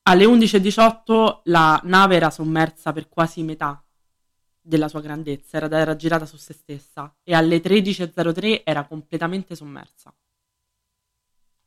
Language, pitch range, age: Italian, 145-170 Hz, 20-39